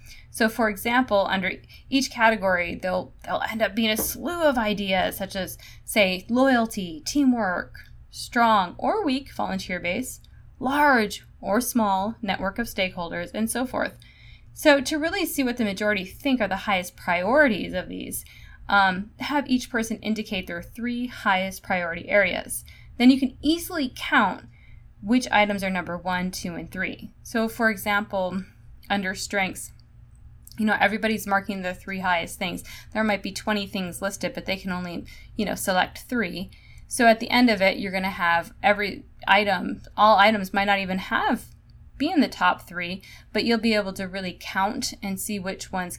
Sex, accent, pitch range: female, American, 185-235 Hz